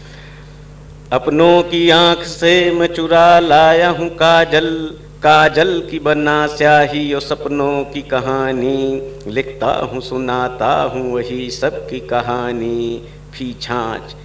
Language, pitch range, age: Hindi, 130-155 Hz, 50-69